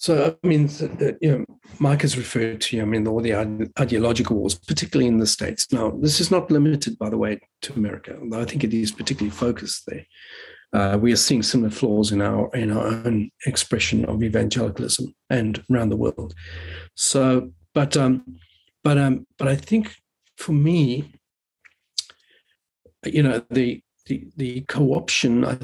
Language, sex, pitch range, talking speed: English, male, 110-145 Hz, 170 wpm